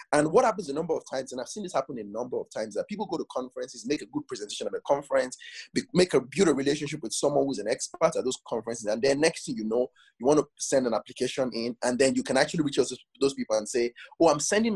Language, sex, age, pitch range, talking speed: English, male, 20-39, 125-205 Hz, 270 wpm